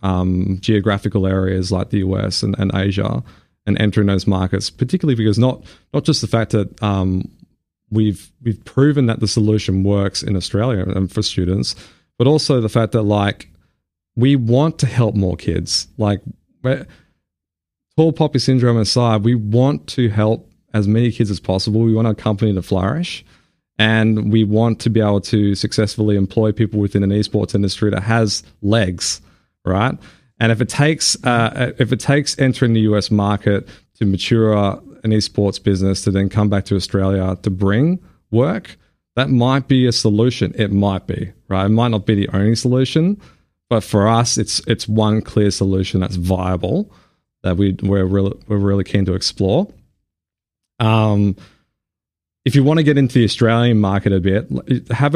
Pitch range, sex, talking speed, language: 95-115 Hz, male, 170 wpm, English